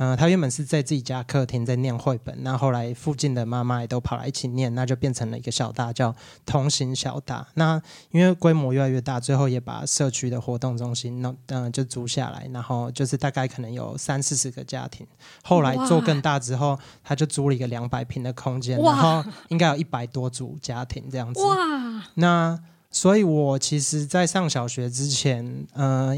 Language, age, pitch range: Chinese, 20-39, 125-150 Hz